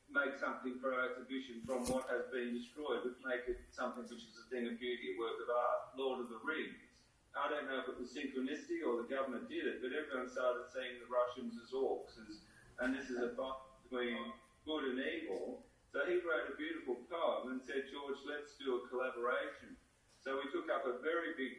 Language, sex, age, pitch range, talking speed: Ukrainian, male, 40-59, 120-145 Hz, 215 wpm